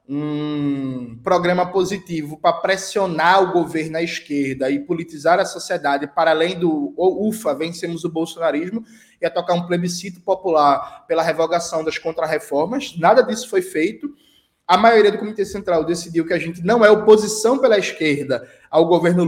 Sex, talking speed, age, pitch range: male, 160 wpm, 20-39, 165-220 Hz